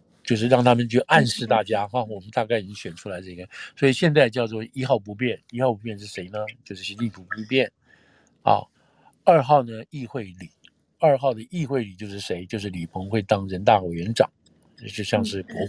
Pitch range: 95-120 Hz